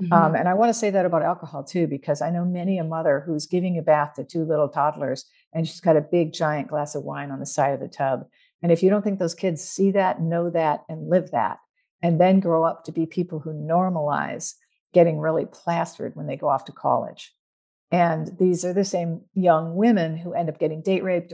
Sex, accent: female, American